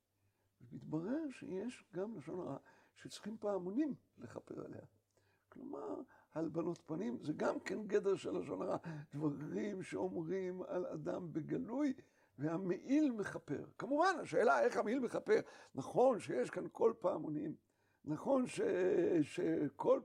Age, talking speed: 60-79, 115 wpm